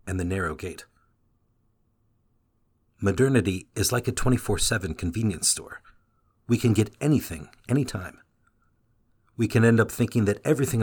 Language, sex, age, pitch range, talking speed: English, male, 50-69, 100-120 Hz, 125 wpm